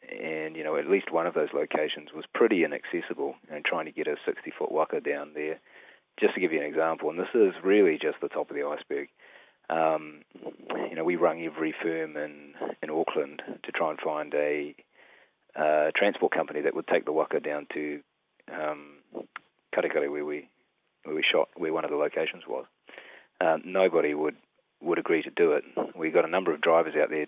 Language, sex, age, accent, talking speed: English, male, 30-49, Australian, 200 wpm